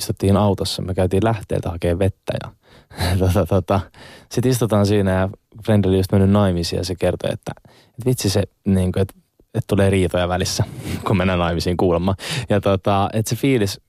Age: 20-39